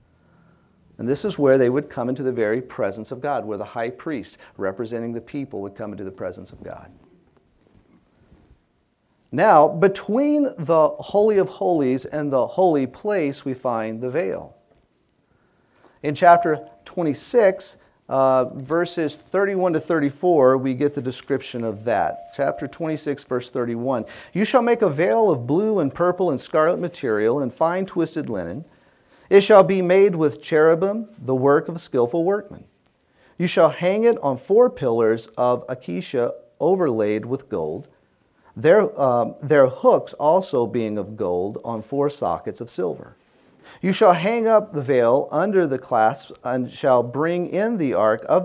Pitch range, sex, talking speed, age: 125-180 Hz, male, 160 wpm, 40-59